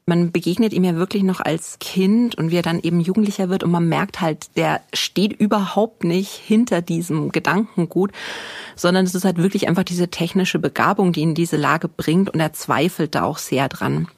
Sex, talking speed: female, 200 wpm